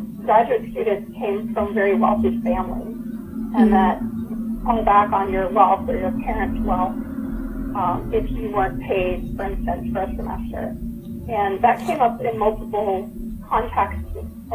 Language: English